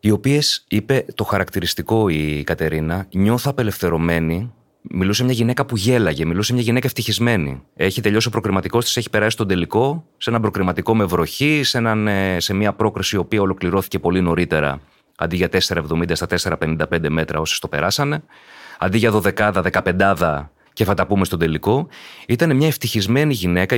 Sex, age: male, 30-49